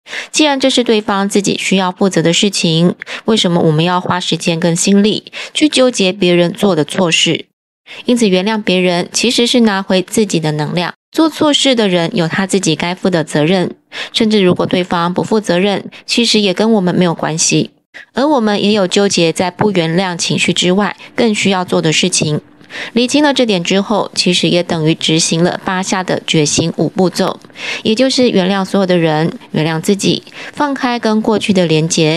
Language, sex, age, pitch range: Chinese, female, 20-39, 175-215 Hz